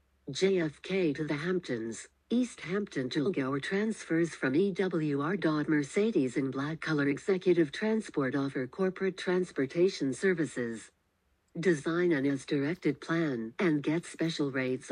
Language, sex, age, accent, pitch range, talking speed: English, female, 60-79, American, 140-185 Hz, 120 wpm